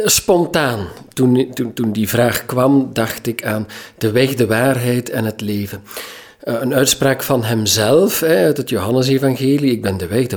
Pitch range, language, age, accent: 110-140 Hz, Dutch, 50-69, Dutch